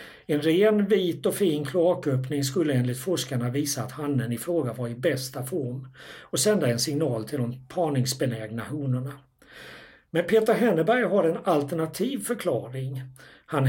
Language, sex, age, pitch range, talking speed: Swedish, male, 60-79, 130-170 Hz, 150 wpm